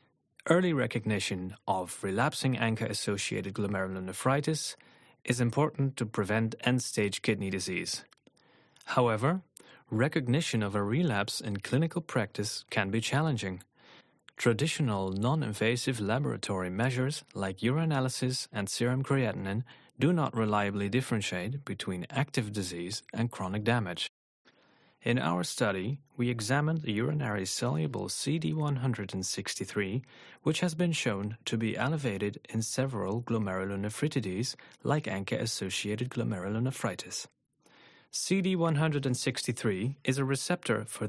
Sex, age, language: male, 30-49, English